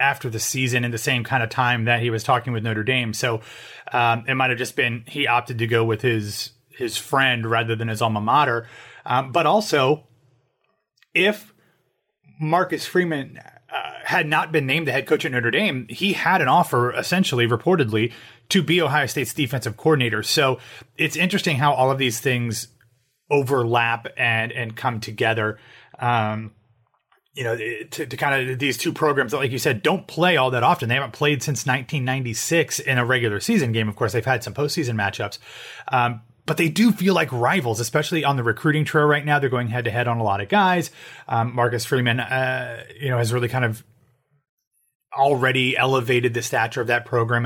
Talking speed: 195 wpm